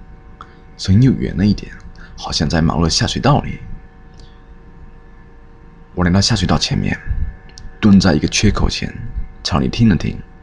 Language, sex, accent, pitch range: Chinese, male, native, 80-95 Hz